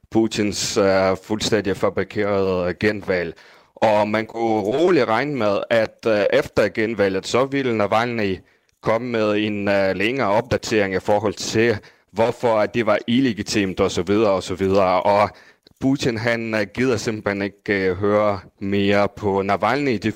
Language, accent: Danish, native